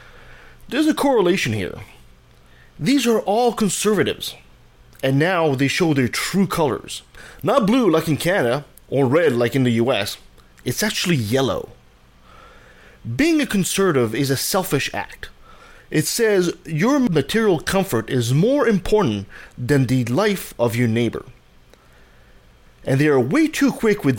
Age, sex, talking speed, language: 30-49, male, 140 wpm, English